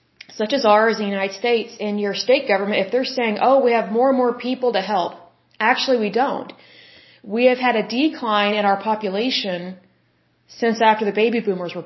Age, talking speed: 30-49, 200 wpm